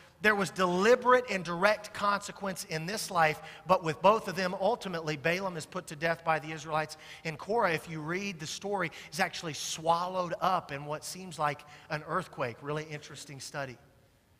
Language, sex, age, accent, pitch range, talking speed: English, male, 40-59, American, 135-165 Hz, 180 wpm